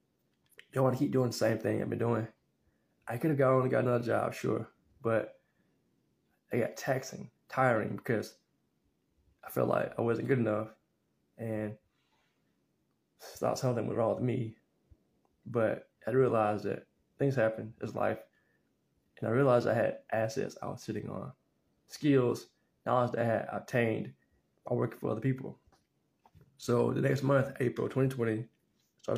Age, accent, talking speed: 20-39, American, 155 wpm